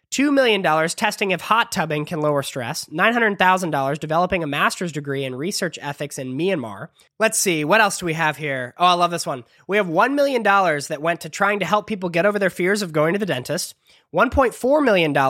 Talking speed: 210 wpm